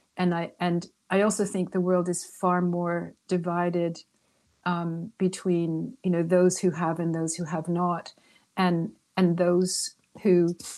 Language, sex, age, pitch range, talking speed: English, female, 50-69, 175-200 Hz, 155 wpm